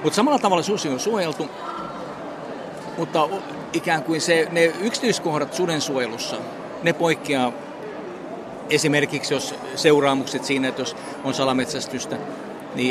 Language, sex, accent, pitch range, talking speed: Finnish, male, native, 130-150 Hz, 115 wpm